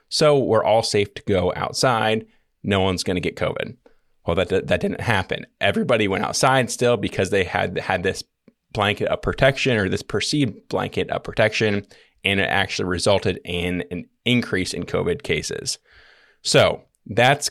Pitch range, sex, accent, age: 95-110 Hz, male, American, 20-39